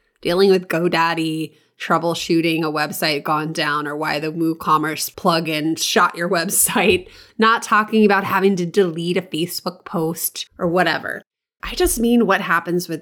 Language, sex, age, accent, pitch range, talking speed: English, female, 20-39, American, 160-220 Hz, 150 wpm